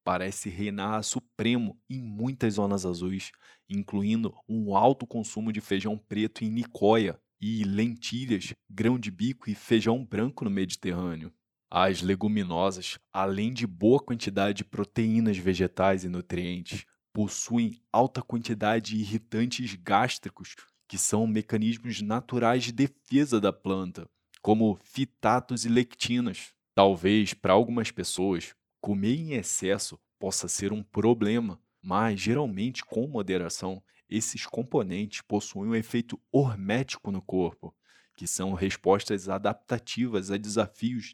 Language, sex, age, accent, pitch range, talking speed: Portuguese, male, 20-39, Brazilian, 100-120 Hz, 120 wpm